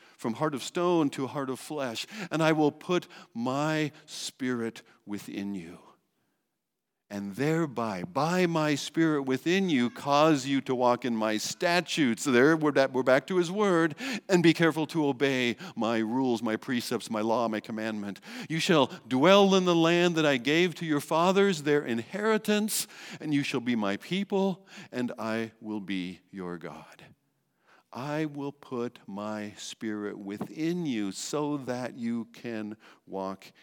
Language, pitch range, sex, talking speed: English, 110-175 Hz, male, 155 wpm